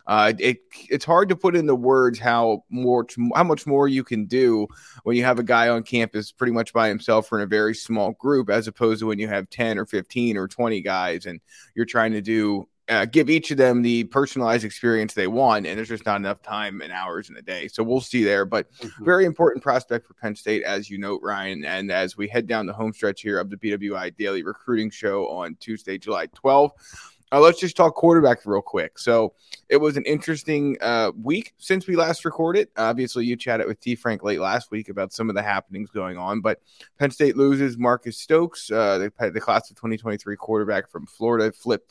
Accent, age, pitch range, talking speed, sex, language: American, 20-39, 105-130 Hz, 220 wpm, male, English